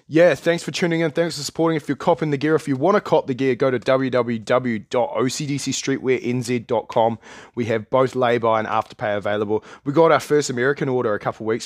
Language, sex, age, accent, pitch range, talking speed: English, male, 20-39, Australian, 115-135 Hz, 210 wpm